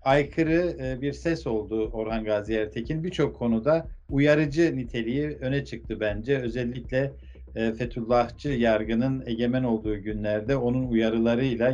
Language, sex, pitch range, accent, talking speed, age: Turkish, male, 115-145 Hz, native, 115 wpm, 50-69